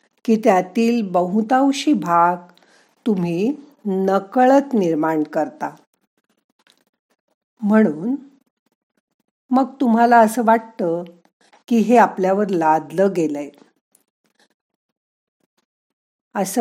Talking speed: 70 wpm